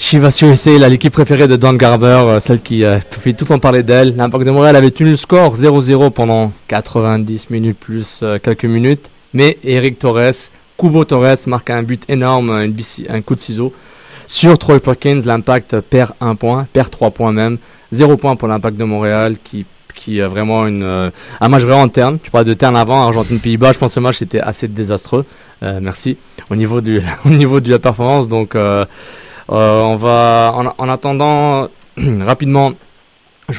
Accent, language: French, French